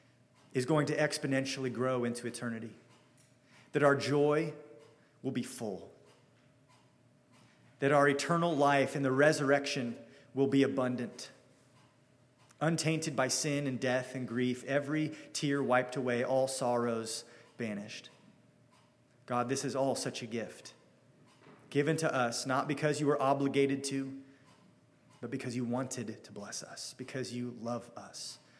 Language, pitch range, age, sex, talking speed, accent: English, 120-140 Hz, 30-49, male, 135 wpm, American